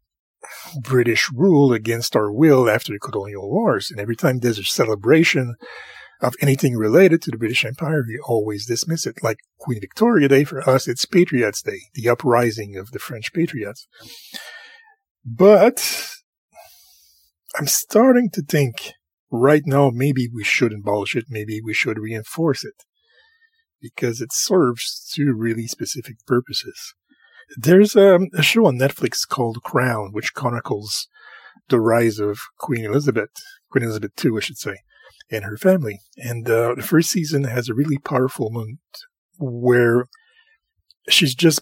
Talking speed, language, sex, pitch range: 145 wpm, English, male, 115-185 Hz